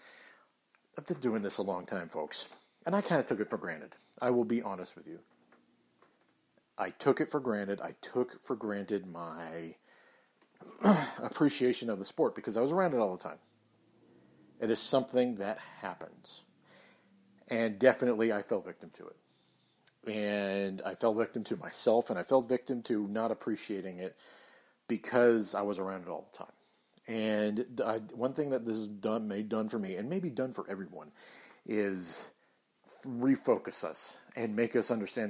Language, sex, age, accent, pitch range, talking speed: English, male, 40-59, American, 100-120 Hz, 175 wpm